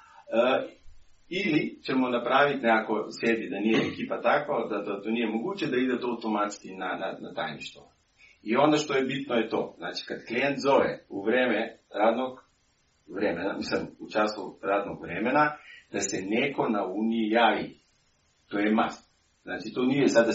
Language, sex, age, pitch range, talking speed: Croatian, male, 40-59, 105-135 Hz, 170 wpm